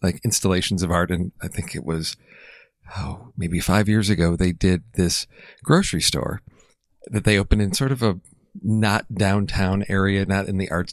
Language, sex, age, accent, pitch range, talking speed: English, male, 40-59, American, 90-110 Hz, 180 wpm